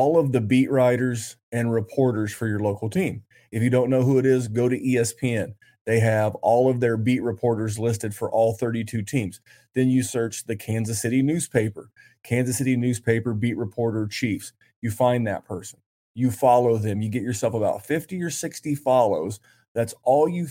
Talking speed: 185 wpm